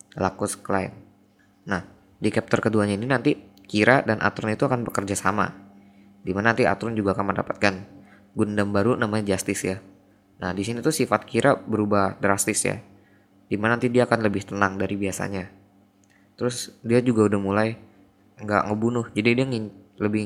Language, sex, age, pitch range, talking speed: Indonesian, female, 10-29, 100-110 Hz, 160 wpm